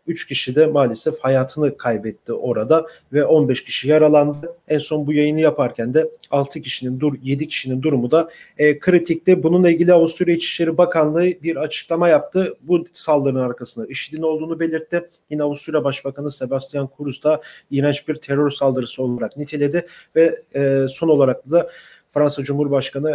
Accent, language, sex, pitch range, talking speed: Turkish, German, male, 130-160 Hz, 155 wpm